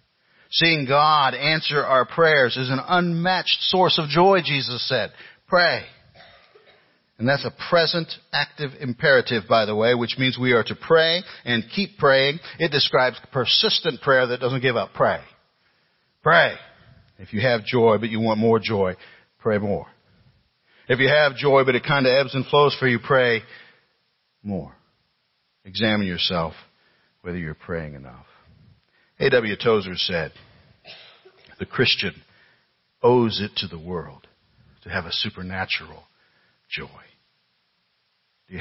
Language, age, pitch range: English, 50-69, 95-140 Hz